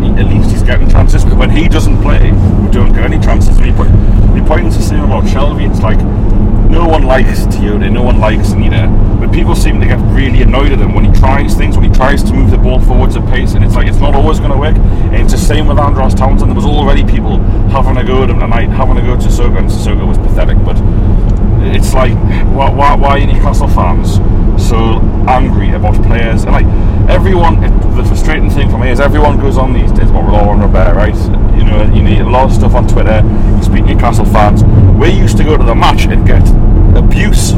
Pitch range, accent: 100-105 Hz, British